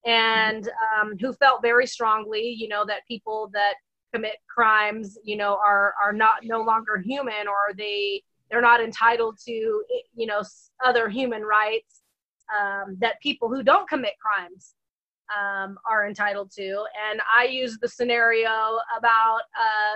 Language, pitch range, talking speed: English, 215-260 Hz, 145 wpm